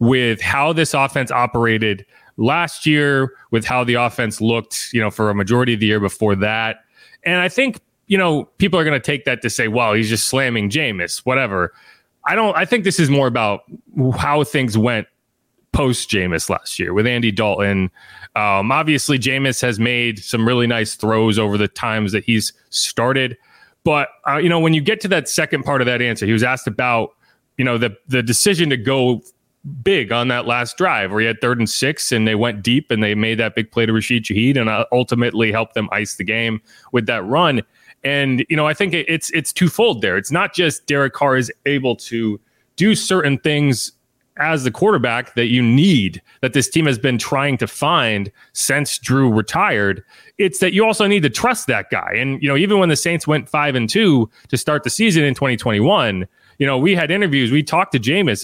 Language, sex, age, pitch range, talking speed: English, male, 30-49, 115-150 Hz, 210 wpm